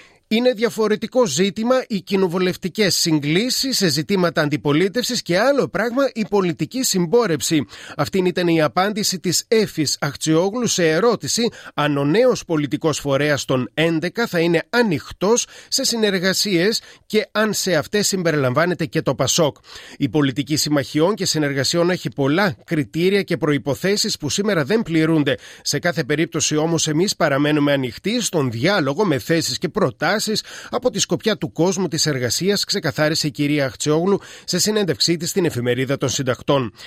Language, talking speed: Greek, 145 wpm